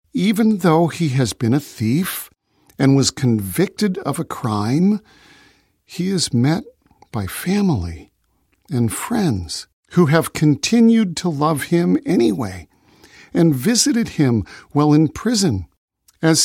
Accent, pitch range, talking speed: American, 125-180 Hz, 125 wpm